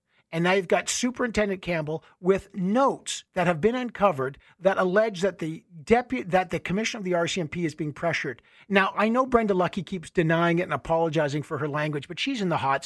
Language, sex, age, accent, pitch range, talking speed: English, male, 50-69, American, 165-220 Hz, 195 wpm